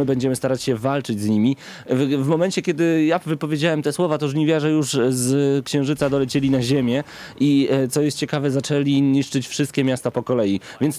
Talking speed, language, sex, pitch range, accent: 175 wpm, Polish, male, 130-150 Hz, native